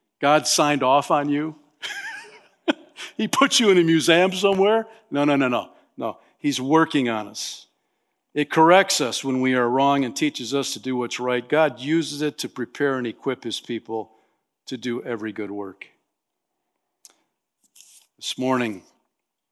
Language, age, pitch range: English, 50-69, 115-145 Hz